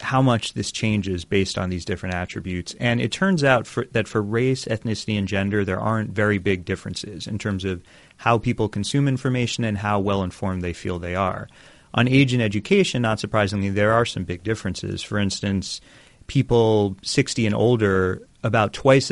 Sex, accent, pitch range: male, American, 95-115 Hz